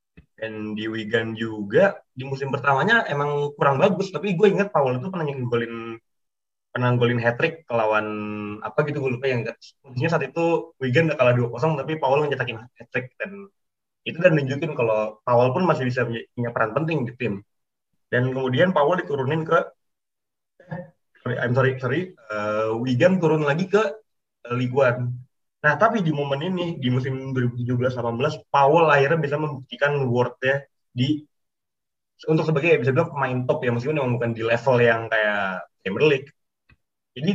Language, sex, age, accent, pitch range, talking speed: Indonesian, male, 20-39, native, 120-155 Hz, 155 wpm